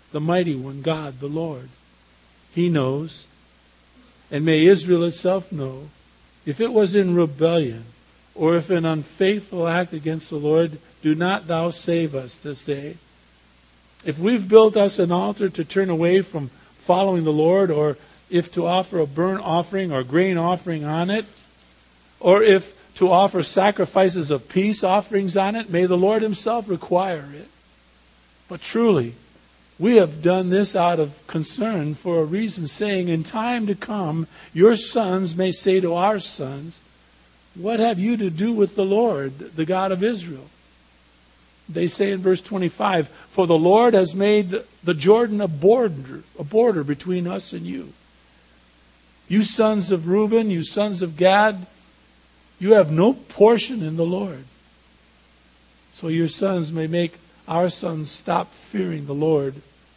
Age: 50-69